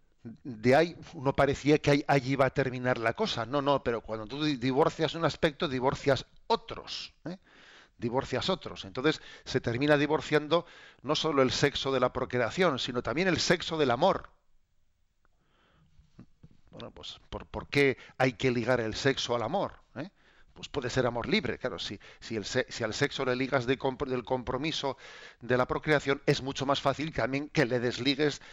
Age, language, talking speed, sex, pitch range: 50-69, Spanish, 175 wpm, male, 125-150 Hz